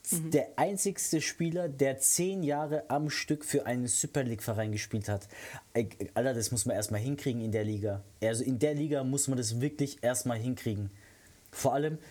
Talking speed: 180 wpm